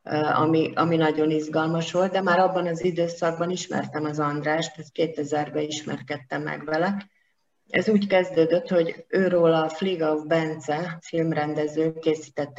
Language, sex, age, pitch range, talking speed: Hungarian, female, 30-49, 150-180 Hz, 140 wpm